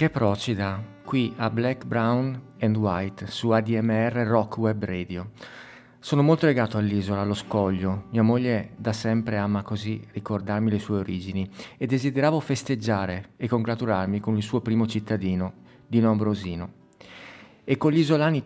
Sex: male